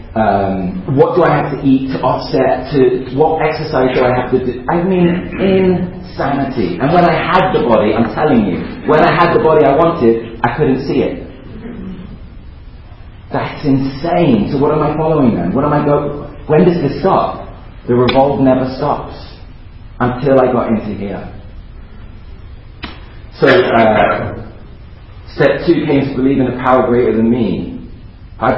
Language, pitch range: English, 105-130 Hz